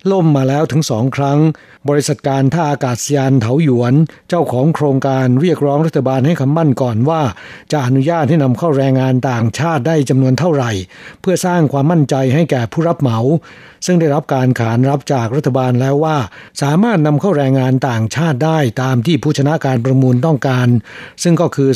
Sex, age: male, 60-79